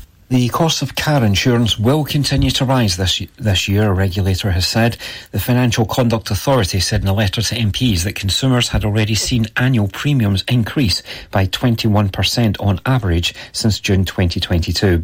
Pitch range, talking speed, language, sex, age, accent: 95-120 Hz, 165 wpm, English, male, 40-59, British